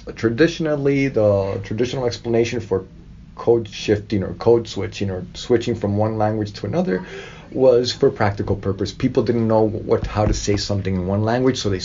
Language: English